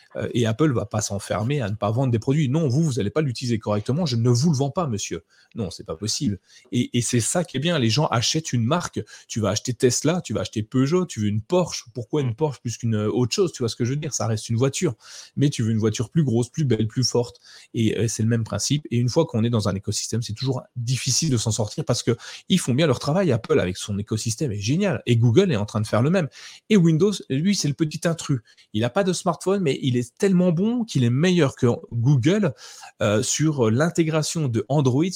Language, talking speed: French, 260 wpm